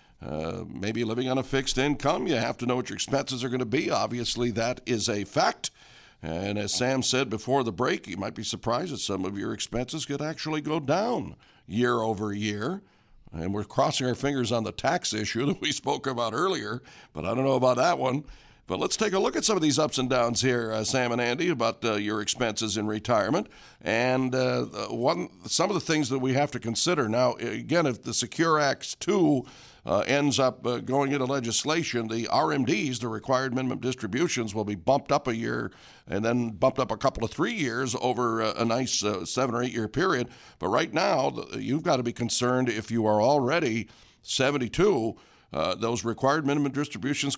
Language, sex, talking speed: English, male, 210 wpm